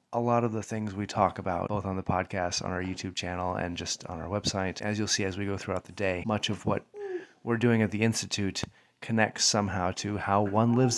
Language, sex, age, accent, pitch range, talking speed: English, male, 30-49, American, 95-115 Hz, 240 wpm